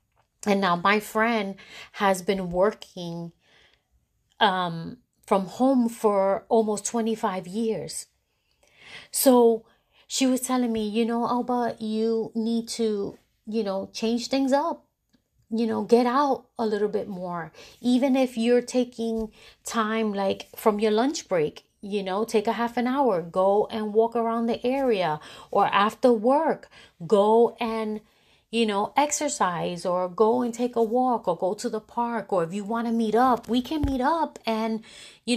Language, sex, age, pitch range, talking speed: English, female, 30-49, 205-245 Hz, 160 wpm